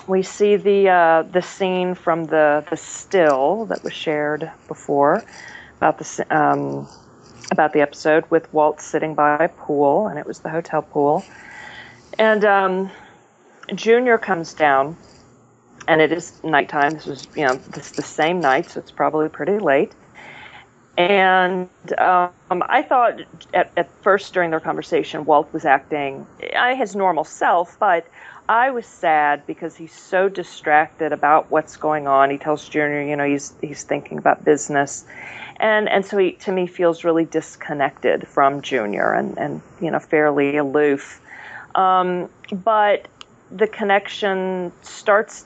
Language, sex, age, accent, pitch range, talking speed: English, female, 40-59, American, 150-190 Hz, 150 wpm